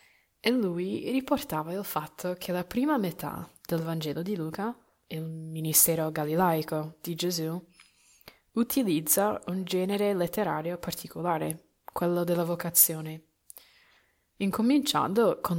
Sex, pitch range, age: female, 160-195 Hz, 20-39